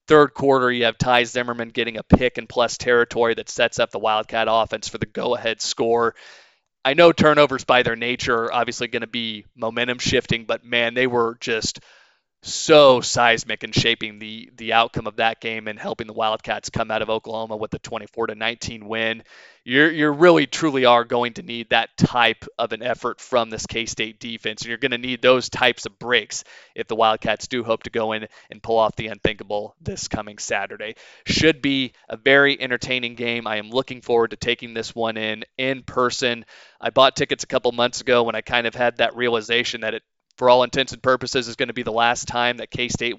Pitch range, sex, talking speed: 115-130 Hz, male, 215 wpm